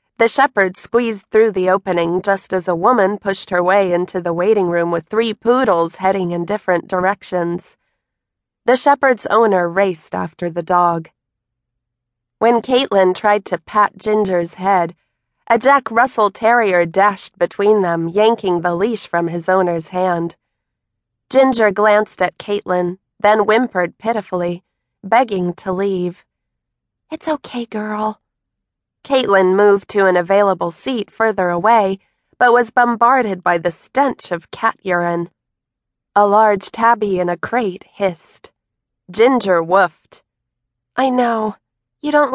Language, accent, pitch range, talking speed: English, American, 175-215 Hz, 135 wpm